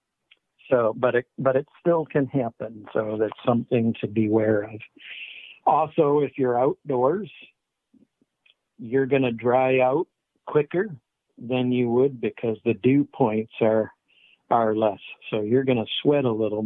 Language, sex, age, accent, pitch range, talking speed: English, male, 60-79, American, 110-130 Hz, 150 wpm